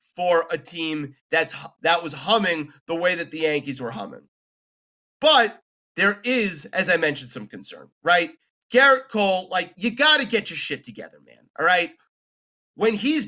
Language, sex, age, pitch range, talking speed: English, male, 30-49, 170-230 Hz, 165 wpm